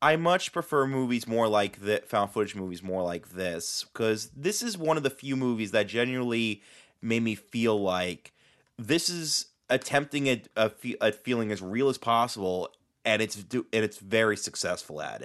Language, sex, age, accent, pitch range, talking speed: English, male, 30-49, American, 105-145 Hz, 175 wpm